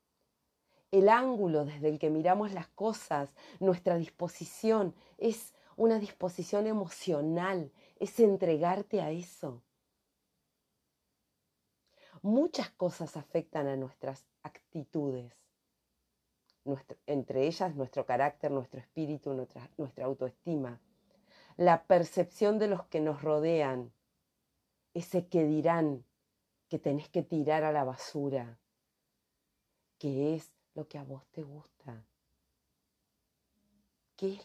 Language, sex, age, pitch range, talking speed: Spanish, female, 40-59, 135-180 Hz, 105 wpm